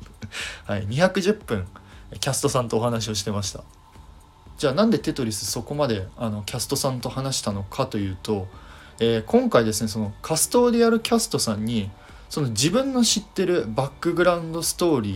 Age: 20-39